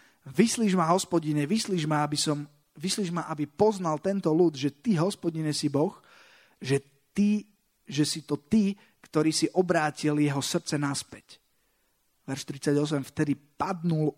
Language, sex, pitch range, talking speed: Slovak, male, 150-185 Hz, 130 wpm